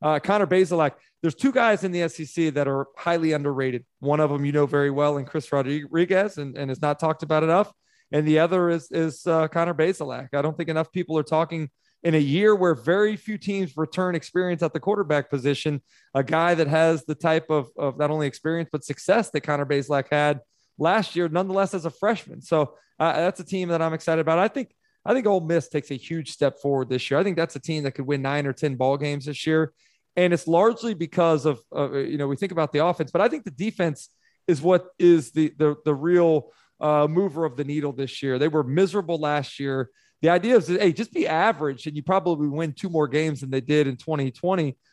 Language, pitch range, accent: English, 145-175 Hz, American